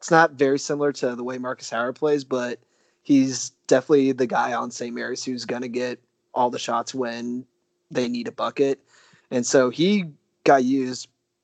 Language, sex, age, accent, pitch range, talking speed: English, male, 20-39, American, 120-140 Hz, 185 wpm